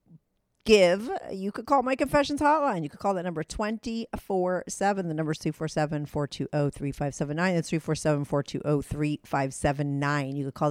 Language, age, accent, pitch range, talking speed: English, 40-59, American, 145-185 Hz, 185 wpm